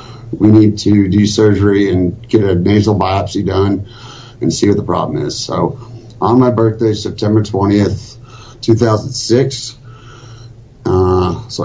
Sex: male